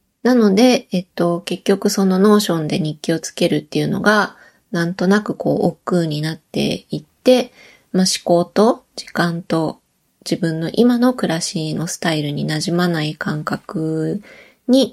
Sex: female